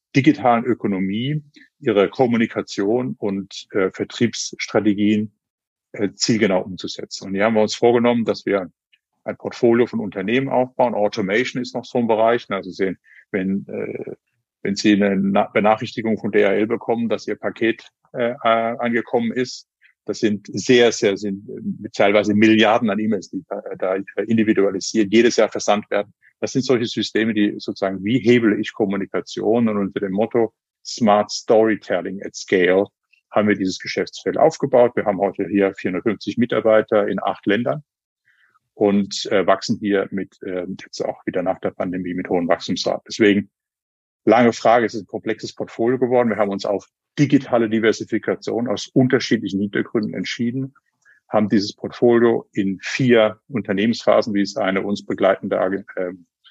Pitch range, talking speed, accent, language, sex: 100-120 Hz, 150 wpm, German, German, male